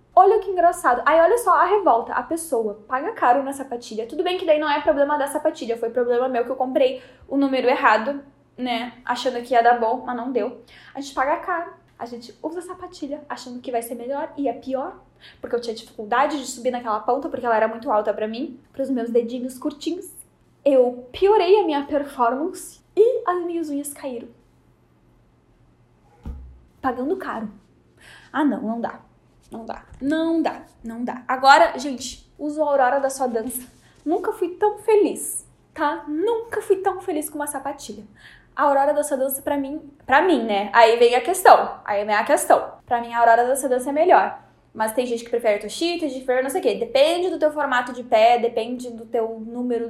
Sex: female